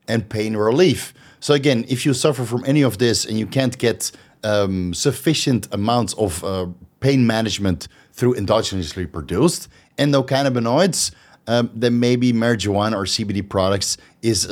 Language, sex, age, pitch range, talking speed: English, male, 30-49, 105-140 Hz, 145 wpm